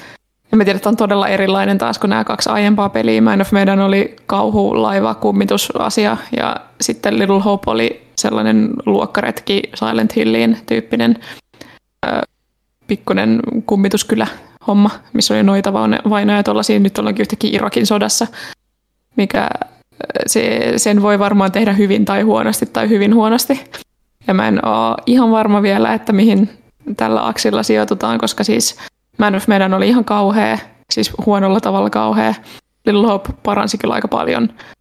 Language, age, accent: Finnish, 20-39, native